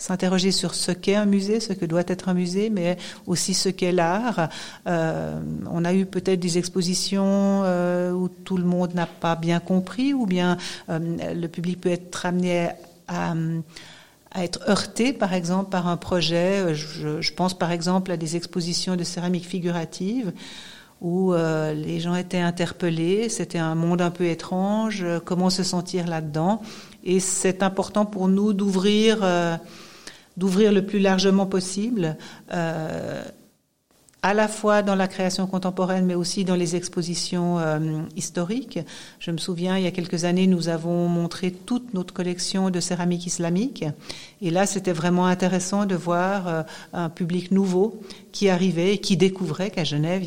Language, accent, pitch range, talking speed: English, French, 170-190 Hz, 165 wpm